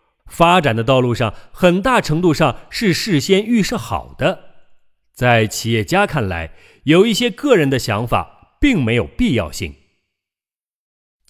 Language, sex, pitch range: Chinese, male, 110-175 Hz